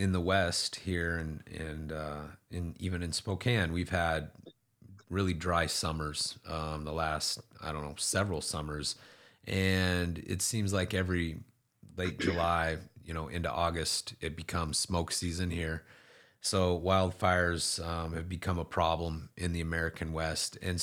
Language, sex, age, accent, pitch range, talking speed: English, male, 30-49, American, 85-100 Hz, 150 wpm